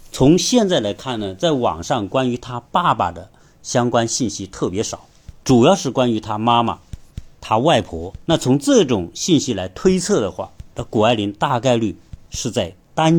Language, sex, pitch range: Chinese, male, 100-150 Hz